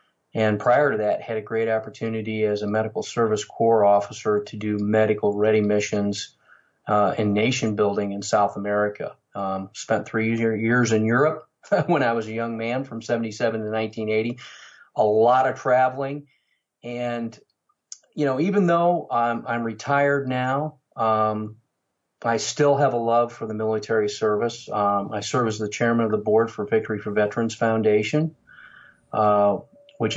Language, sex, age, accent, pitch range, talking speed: English, male, 40-59, American, 105-120 Hz, 160 wpm